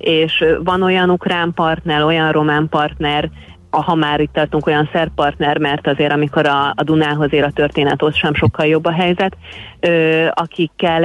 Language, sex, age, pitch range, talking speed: Hungarian, female, 30-49, 150-175 Hz, 175 wpm